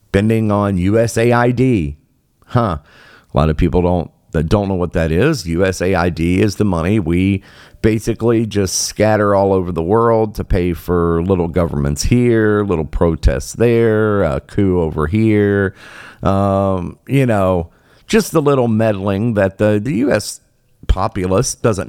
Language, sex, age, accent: English, male, 50-69, American